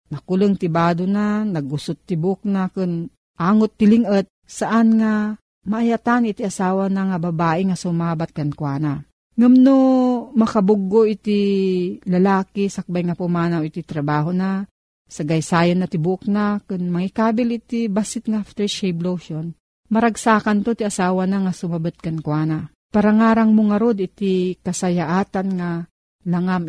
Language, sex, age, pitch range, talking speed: Filipino, female, 40-59, 175-220 Hz, 135 wpm